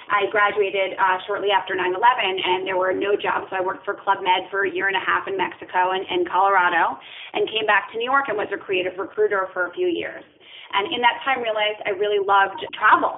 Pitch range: 185-275 Hz